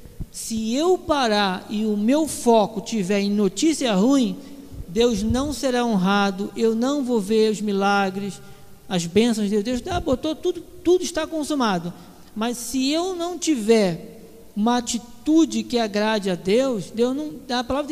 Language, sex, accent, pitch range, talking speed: Portuguese, male, Brazilian, 220-275 Hz, 145 wpm